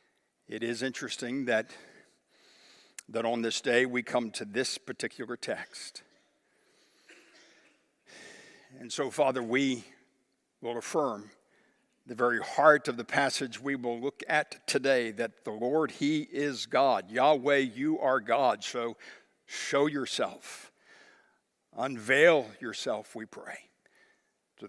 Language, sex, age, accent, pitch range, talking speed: English, male, 60-79, American, 125-155 Hz, 120 wpm